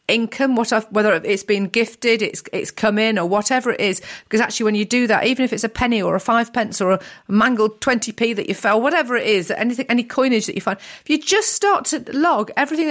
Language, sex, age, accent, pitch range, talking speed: English, female, 40-59, British, 205-270 Hz, 245 wpm